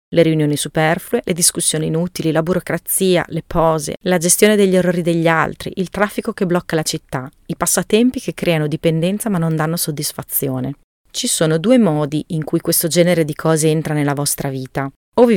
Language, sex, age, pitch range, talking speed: Italian, female, 30-49, 155-185 Hz, 185 wpm